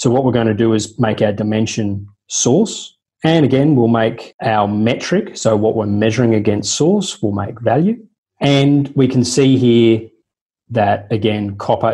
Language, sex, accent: English, male, Australian